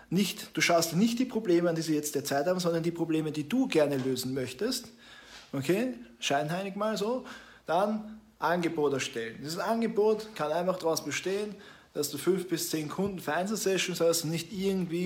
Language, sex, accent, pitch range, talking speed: German, male, German, 140-185 Hz, 185 wpm